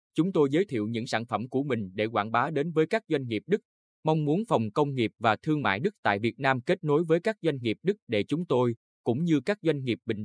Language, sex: Vietnamese, male